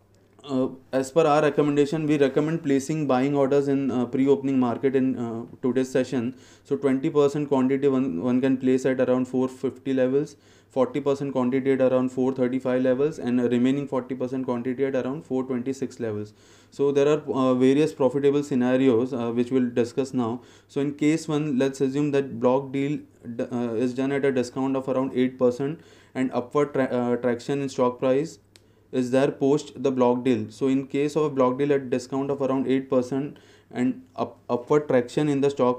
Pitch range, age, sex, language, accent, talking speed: 125-140 Hz, 20-39, male, English, Indian, 175 wpm